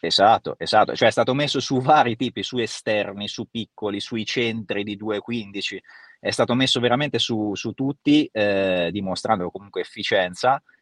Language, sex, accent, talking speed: Italian, male, native, 155 wpm